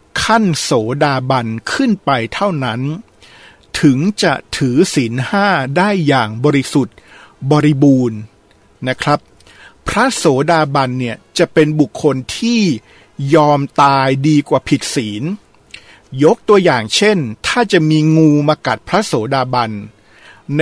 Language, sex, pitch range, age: Thai, male, 125-170 Hz, 60-79